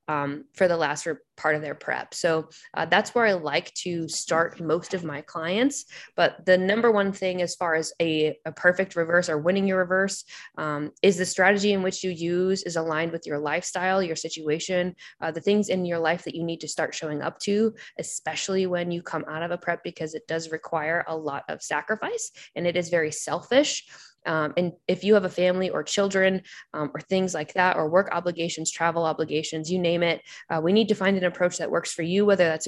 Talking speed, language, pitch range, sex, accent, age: 225 wpm, English, 160-190 Hz, female, American, 20-39